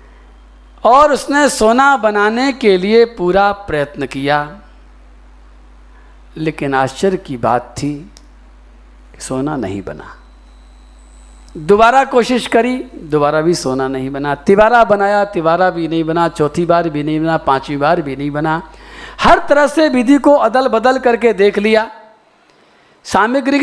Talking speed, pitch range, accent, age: 130 wpm, 135-220 Hz, native, 50-69